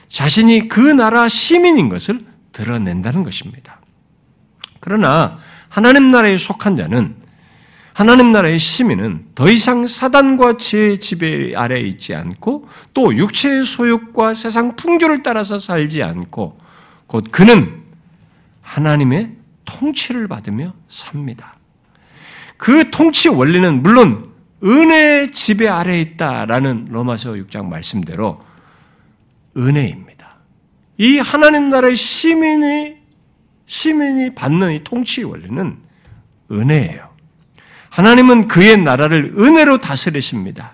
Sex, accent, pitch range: male, native, 160-255 Hz